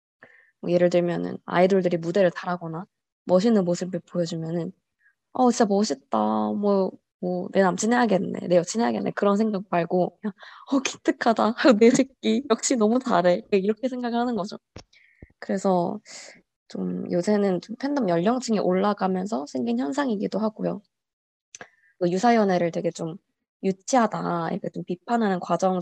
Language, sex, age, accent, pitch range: Korean, female, 20-39, native, 175-235 Hz